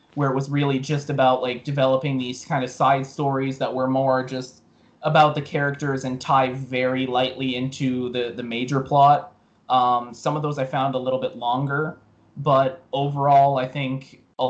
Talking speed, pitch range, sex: 180 wpm, 130-145 Hz, male